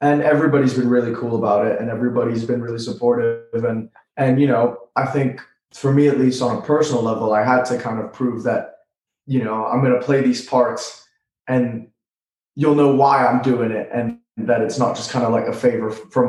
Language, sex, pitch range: English, male, 115-140 Hz